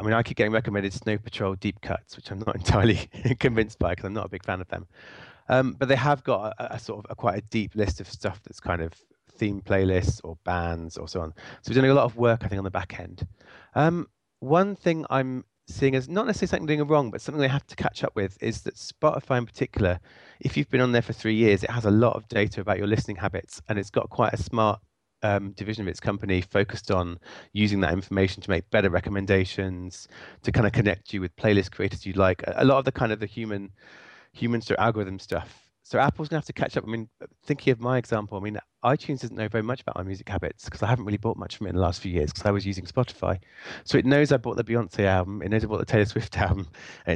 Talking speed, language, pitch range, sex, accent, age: 260 wpm, English, 95-120 Hz, male, British, 30-49